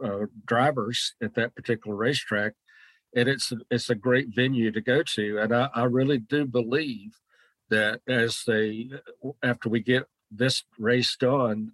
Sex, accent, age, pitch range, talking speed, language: male, American, 50-69, 105-125 Hz, 155 wpm, English